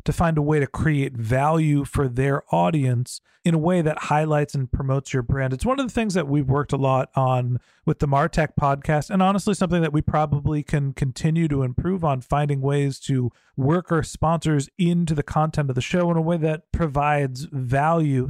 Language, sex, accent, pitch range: English, male, American, 140-170 Hz